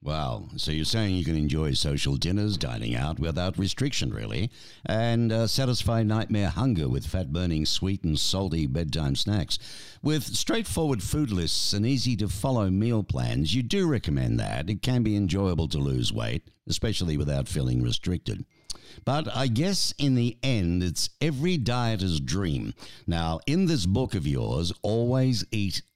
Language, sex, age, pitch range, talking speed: English, male, 60-79, 85-125 Hz, 155 wpm